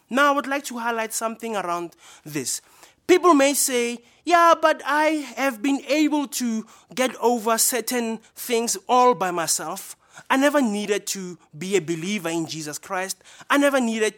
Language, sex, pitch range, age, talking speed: English, male, 170-235 Hz, 20-39, 165 wpm